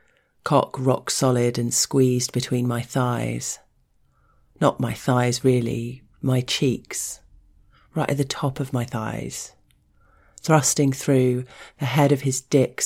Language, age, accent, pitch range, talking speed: English, 40-59, British, 120-135 Hz, 125 wpm